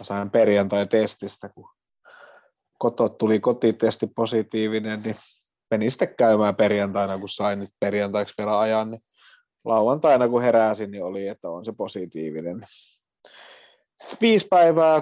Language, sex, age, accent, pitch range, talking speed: Finnish, male, 30-49, native, 105-130 Hz, 115 wpm